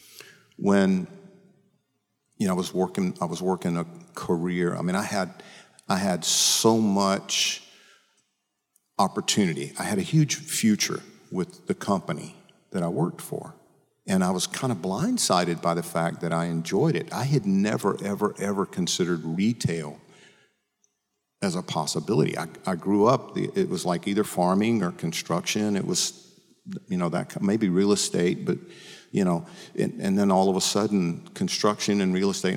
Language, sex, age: English, male, 50-69